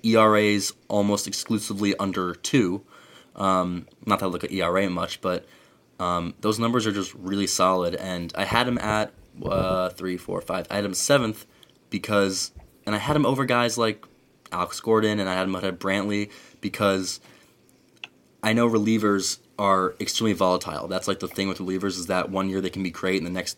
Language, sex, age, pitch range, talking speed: English, male, 20-39, 90-105 Hz, 190 wpm